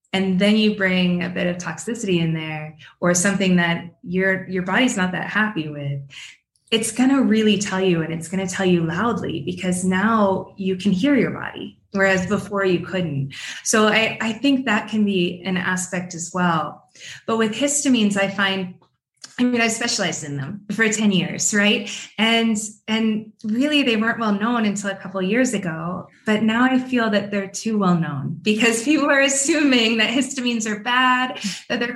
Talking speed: 190 wpm